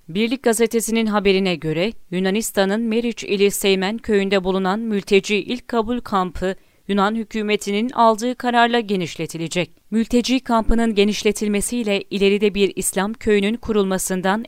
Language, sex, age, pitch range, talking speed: Turkish, female, 40-59, 190-235 Hz, 110 wpm